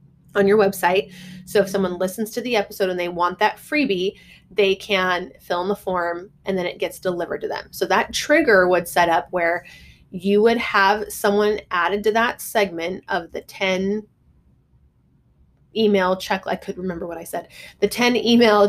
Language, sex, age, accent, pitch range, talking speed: English, female, 20-39, American, 180-215 Hz, 185 wpm